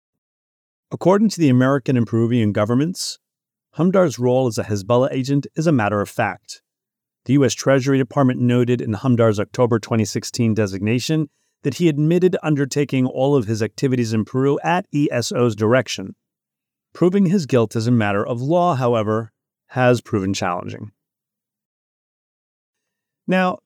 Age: 30-49